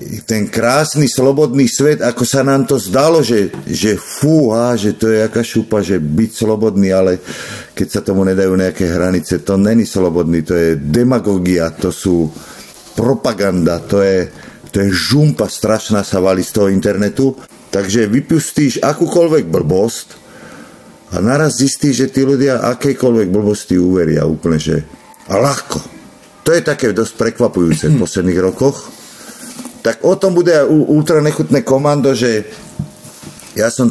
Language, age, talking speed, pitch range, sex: Slovak, 50-69, 145 wpm, 100-135 Hz, male